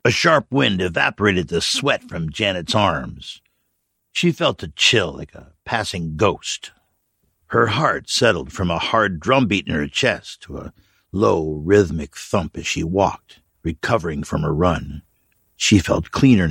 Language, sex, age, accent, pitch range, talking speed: English, male, 60-79, American, 80-105 Hz, 155 wpm